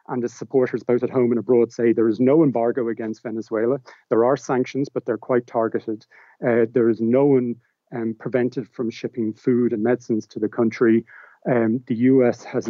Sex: male